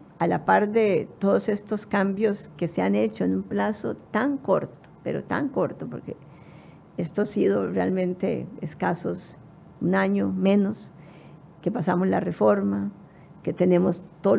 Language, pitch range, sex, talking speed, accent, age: Spanish, 145-210 Hz, female, 145 wpm, American, 50-69